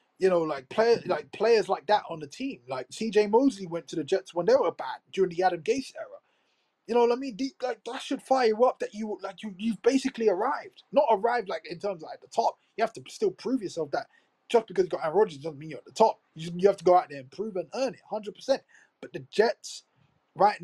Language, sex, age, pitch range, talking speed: English, male, 20-39, 175-255 Hz, 270 wpm